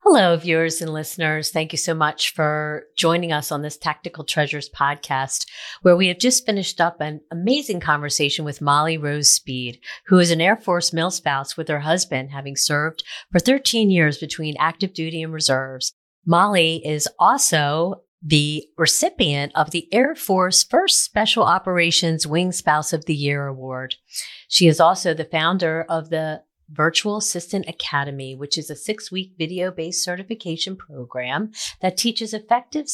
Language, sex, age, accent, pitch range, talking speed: English, female, 40-59, American, 150-185 Hz, 160 wpm